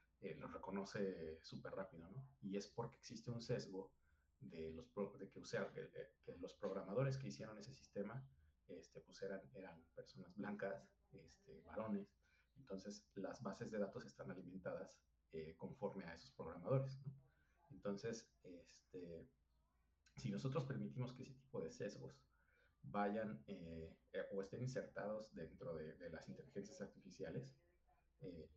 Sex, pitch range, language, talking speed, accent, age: male, 80-105 Hz, Spanish, 150 wpm, Mexican, 40-59